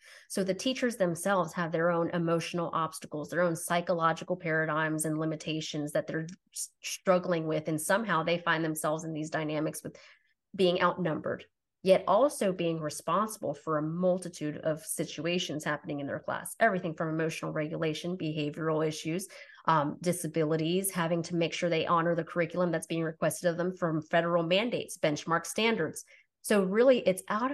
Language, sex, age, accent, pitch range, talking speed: English, female, 20-39, American, 160-185 Hz, 160 wpm